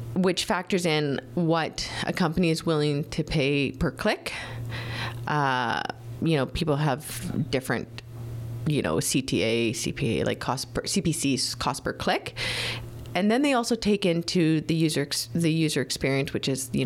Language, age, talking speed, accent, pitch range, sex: English, 30-49, 155 wpm, American, 120-175 Hz, female